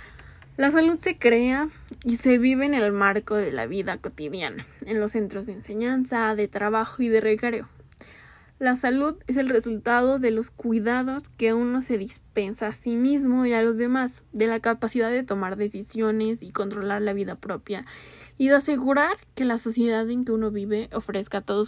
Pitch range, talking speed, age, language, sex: 195-245 Hz, 185 wpm, 10-29, Spanish, female